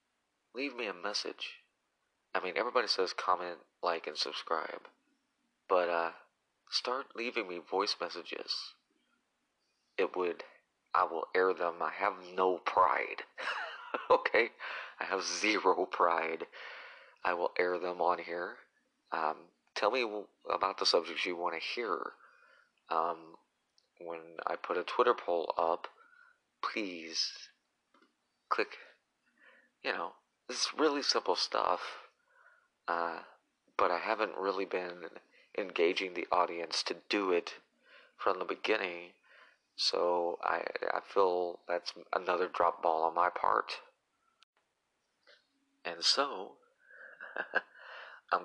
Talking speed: 115 wpm